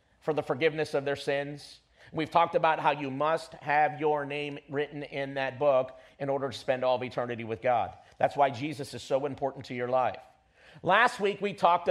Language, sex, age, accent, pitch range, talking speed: English, male, 50-69, American, 140-190 Hz, 205 wpm